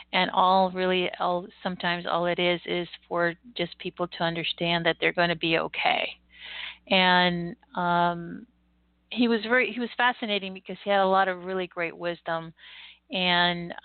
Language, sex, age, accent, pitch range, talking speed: English, female, 50-69, American, 170-195 Hz, 160 wpm